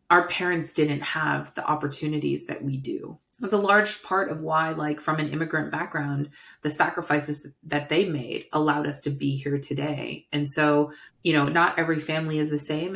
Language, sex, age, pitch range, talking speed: English, female, 30-49, 145-165 Hz, 195 wpm